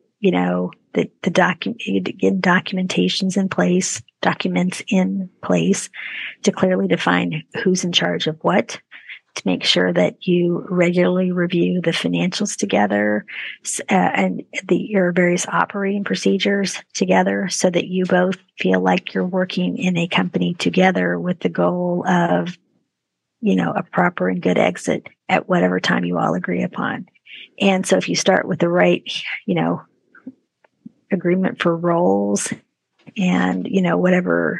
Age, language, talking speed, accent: 40-59, English, 145 wpm, American